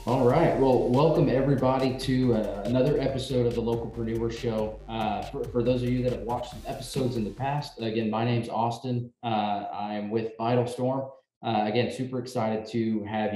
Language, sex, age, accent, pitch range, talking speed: English, male, 20-39, American, 105-125 Hz, 200 wpm